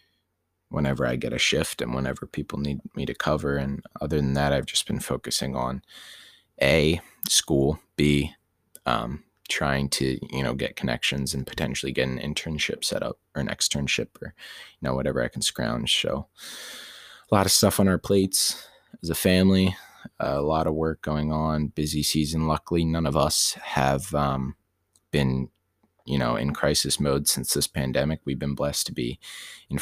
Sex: male